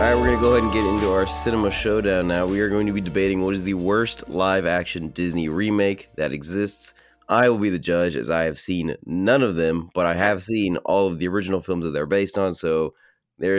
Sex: male